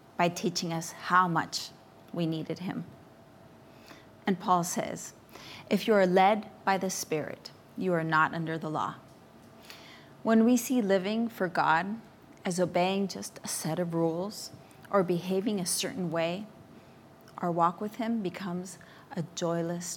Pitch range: 170-210 Hz